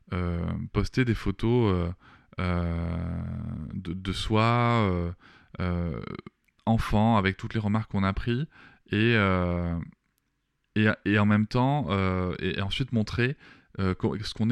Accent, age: French, 20-39